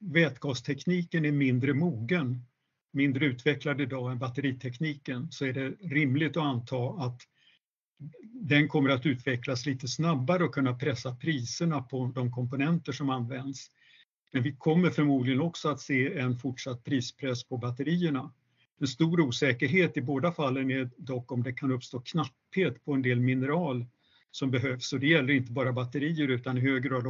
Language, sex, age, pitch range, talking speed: Swedish, male, 50-69, 130-150 Hz, 160 wpm